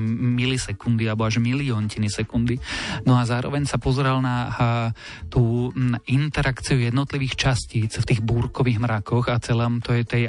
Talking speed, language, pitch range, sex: 140 wpm, Slovak, 115-130 Hz, male